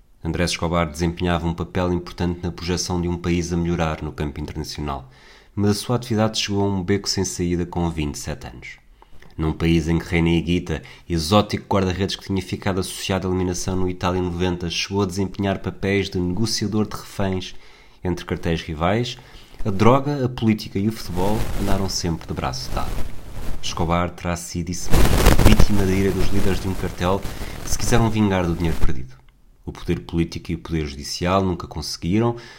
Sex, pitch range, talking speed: male, 85-105 Hz, 180 wpm